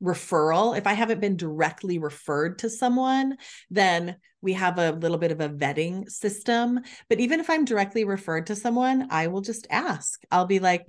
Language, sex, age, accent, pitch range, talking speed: English, female, 30-49, American, 170-235 Hz, 185 wpm